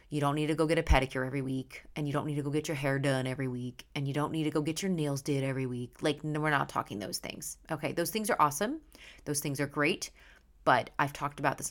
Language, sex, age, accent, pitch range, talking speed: English, female, 30-49, American, 145-175 Hz, 280 wpm